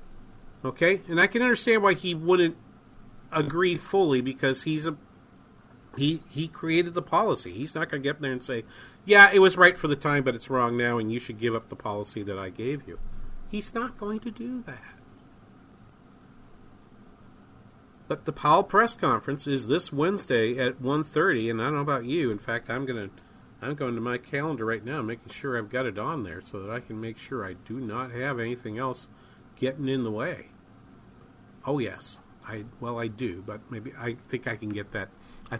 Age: 40-59